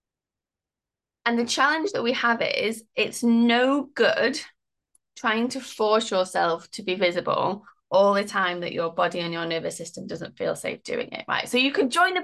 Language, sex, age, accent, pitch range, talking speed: English, female, 20-39, British, 190-270 Hz, 185 wpm